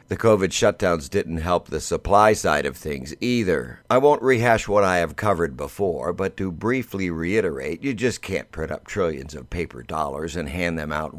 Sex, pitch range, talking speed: male, 85-105 Hz, 195 wpm